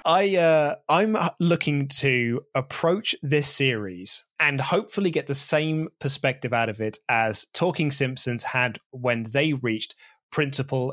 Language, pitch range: English, 125-180 Hz